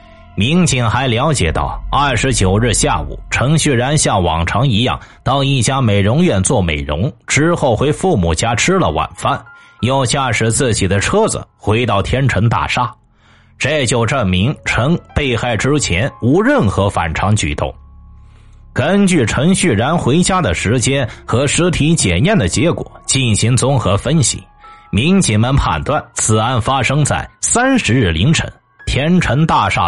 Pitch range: 105-145 Hz